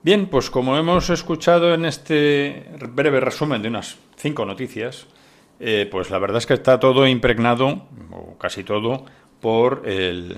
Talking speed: 155 wpm